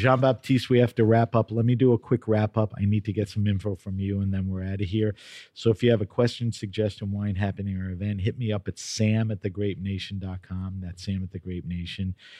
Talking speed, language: 240 wpm, English